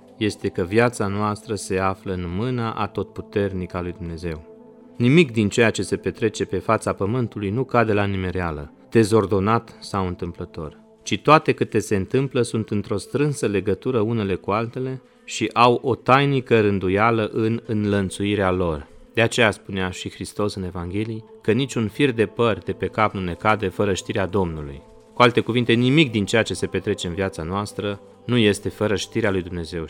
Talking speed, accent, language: 175 wpm, native, Romanian